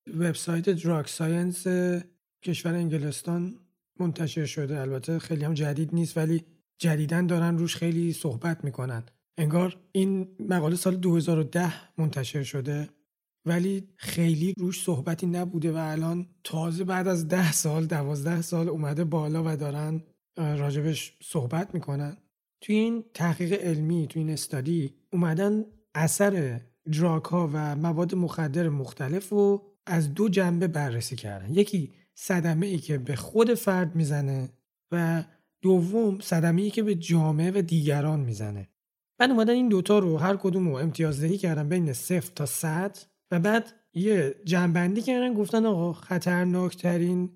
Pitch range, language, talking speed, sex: 155-185 Hz, Persian, 135 wpm, male